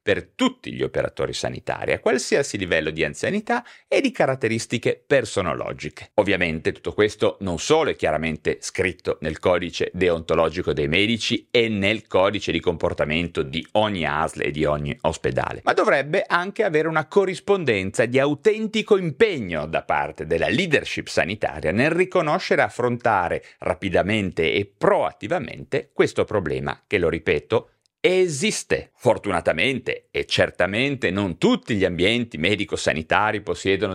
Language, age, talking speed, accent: Italian, 40-59, 135 wpm, native